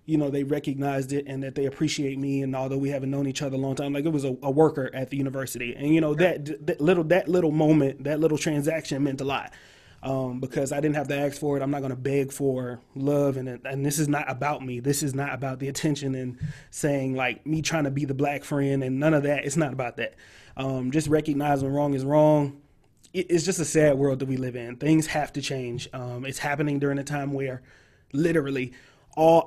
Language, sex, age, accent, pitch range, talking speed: English, male, 20-39, American, 135-150 Hz, 245 wpm